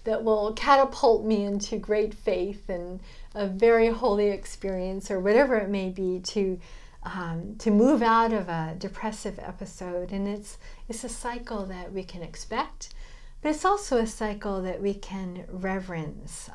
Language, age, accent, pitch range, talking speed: English, 50-69, American, 190-230 Hz, 155 wpm